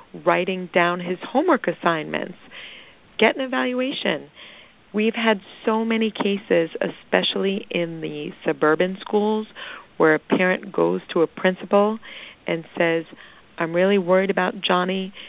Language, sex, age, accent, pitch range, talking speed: English, female, 40-59, American, 170-205 Hz, 125 wpm